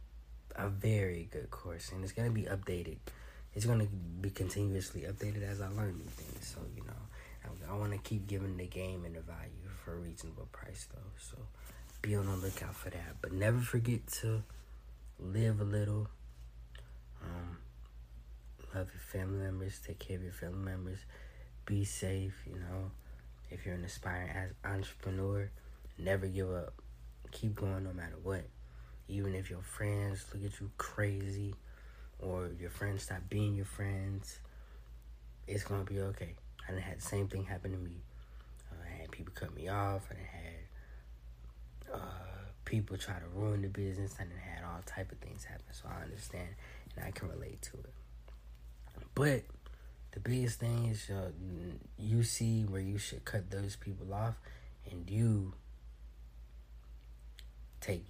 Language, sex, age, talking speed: English, male, 20-39, 170 wpm